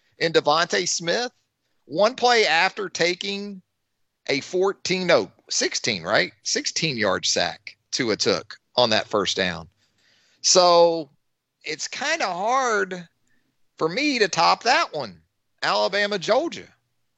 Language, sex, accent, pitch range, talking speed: English, male, American, 135-190 Hz, 120 wpm